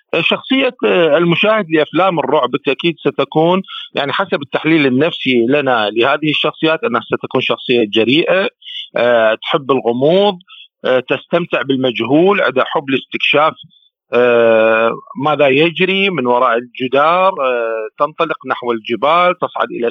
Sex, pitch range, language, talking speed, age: male, 135-185 Hz, Arabic, 100 wpm, 40-59